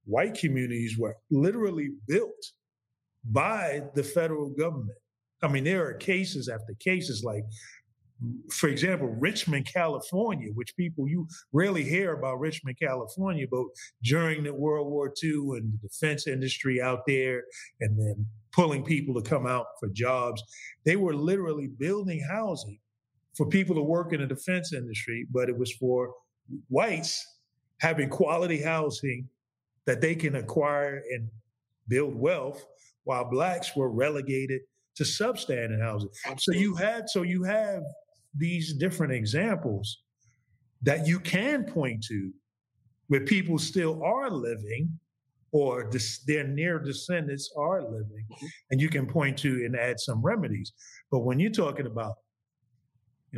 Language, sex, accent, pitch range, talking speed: English, male, American, 120-160 Hz, 140 wpm